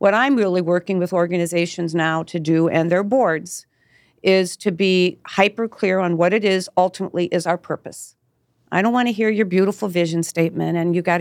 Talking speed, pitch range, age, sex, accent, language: 200 wpm, 170-200 Hz, 50-69, female, American, English